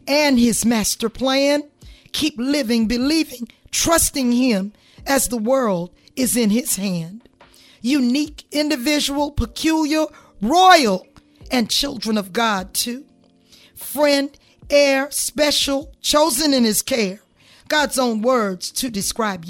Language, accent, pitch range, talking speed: English, American, 225-290 Hz, 115 wpm